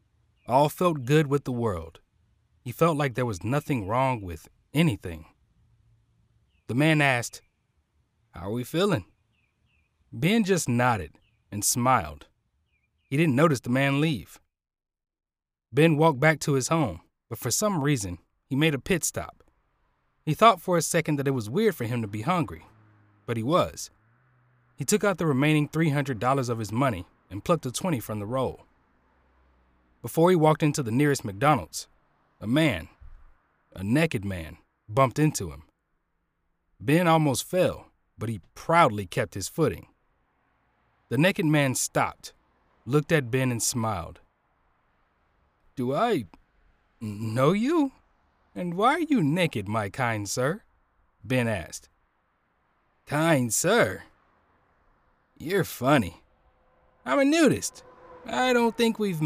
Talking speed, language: 140 wpm, English